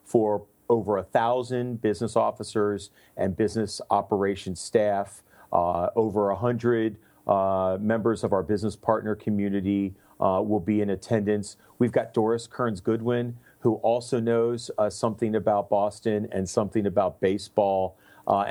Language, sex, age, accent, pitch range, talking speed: English, male, 40-59, American, 105-120 Hz, 135 wpm